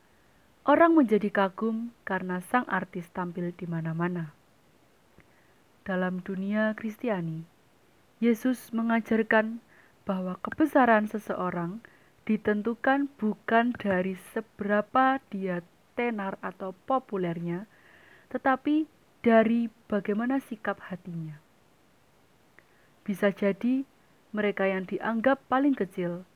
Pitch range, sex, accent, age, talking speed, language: 180-230 Hz, female, native, 30-49, 85 wpm, Indonesian